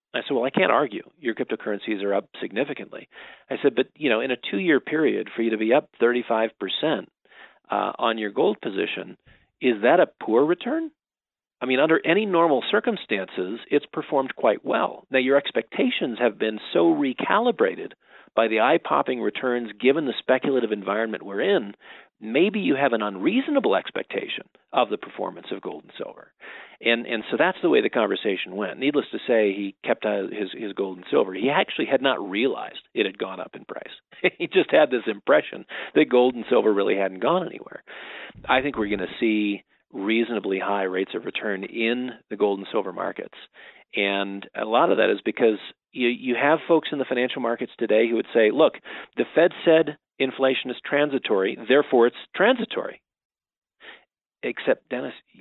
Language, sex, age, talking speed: English, male, 40-59, 180 wpm